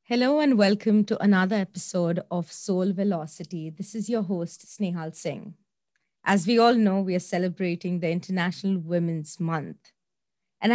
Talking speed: 150 wpm